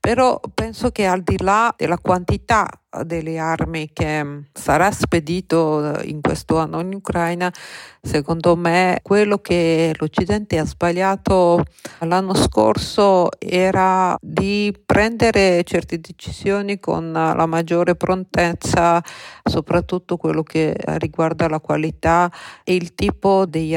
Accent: native